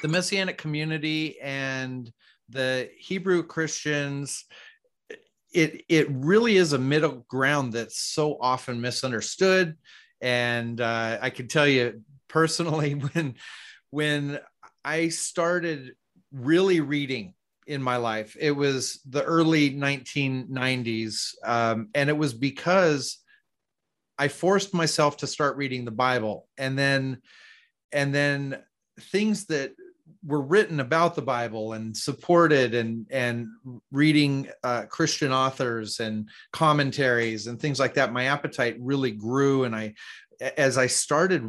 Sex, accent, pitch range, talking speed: male, American, 125-155 Hz, 125 wpm